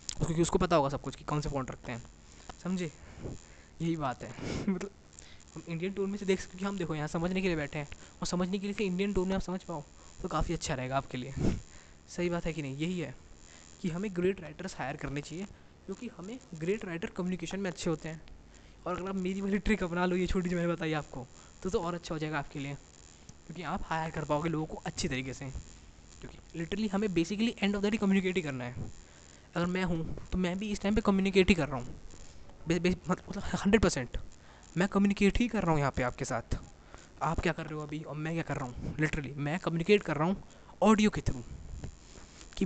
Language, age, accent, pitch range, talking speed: Hindi, 20-39, native, 140-190 Hz, 235 wpm